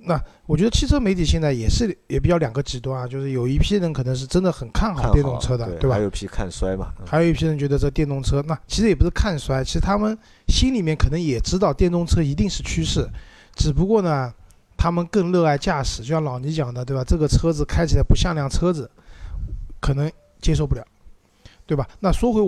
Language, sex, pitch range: Chinese, male, 130-165 Hz